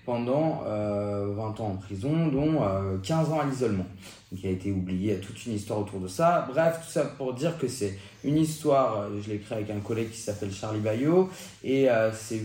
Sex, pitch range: male, 100-150 Hz